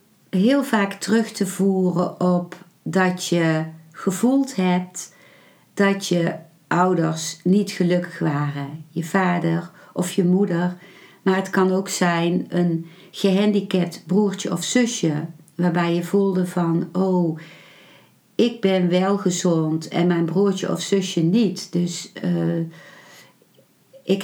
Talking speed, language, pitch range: 120 wpm, Dutch, 165-195 Hz